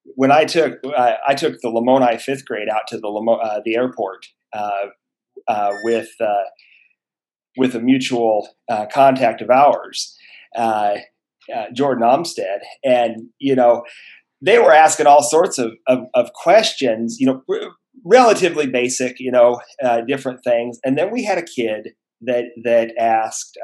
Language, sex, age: English, male, 40-59